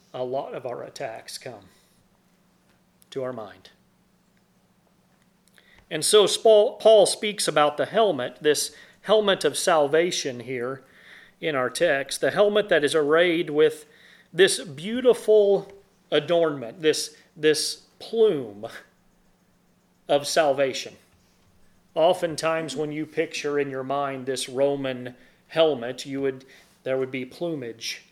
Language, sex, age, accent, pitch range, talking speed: English, male, 40-59, American, 135-190 Hz, 115 wpm